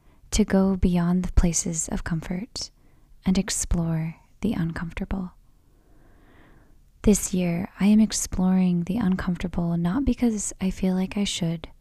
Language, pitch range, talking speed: English, 170-200 Hz, 125 wpm